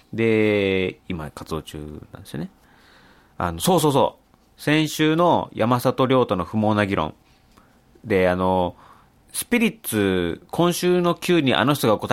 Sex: male